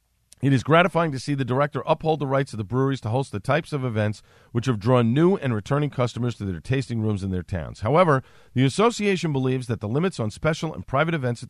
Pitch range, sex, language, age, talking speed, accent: 105-150 Hz, male, English, 50-69, 240 wpm, American